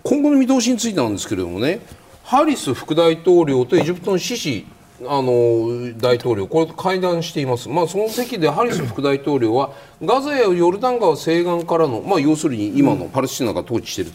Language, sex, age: Japanese, male, 40-59